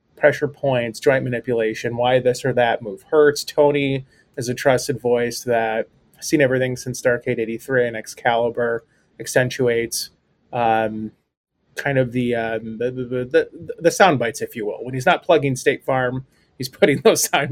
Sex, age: male, 30-49